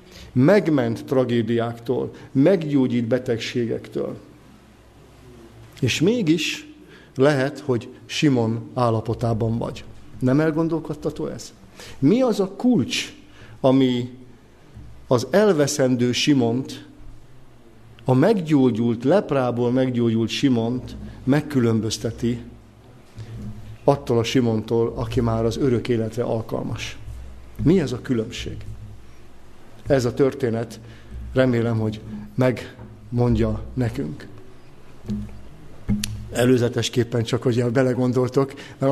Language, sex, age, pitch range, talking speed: Hungarian, male, 50-69, 115-130 Hz, 85 wpm